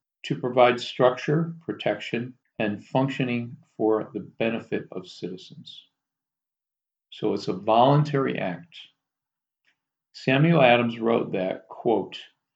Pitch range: 105-135 Hz